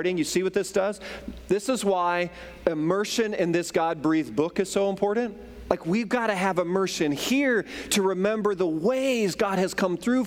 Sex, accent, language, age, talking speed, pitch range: male, American, English, 40-59, 180 wpm, 175-230 Hz